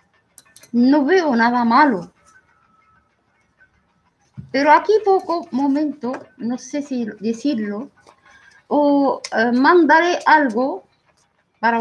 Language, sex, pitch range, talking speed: Spanish, female, 230-290 Hz, 85 wpm